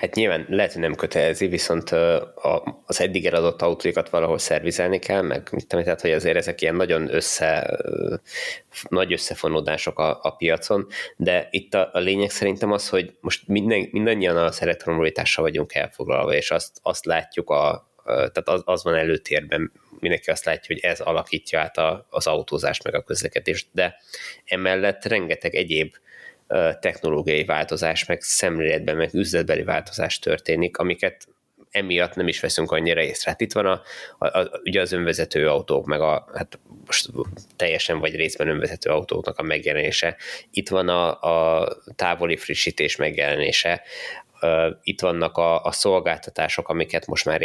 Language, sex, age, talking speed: Hungarian, male, 20-39, 150 wpm